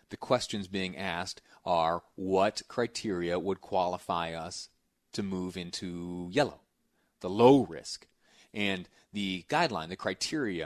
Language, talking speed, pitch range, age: English, 125 wpm, 95-110 Hz, 30-49